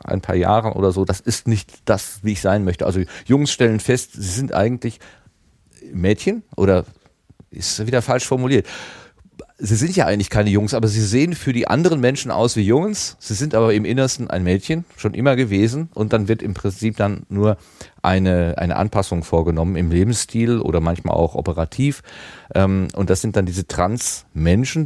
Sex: male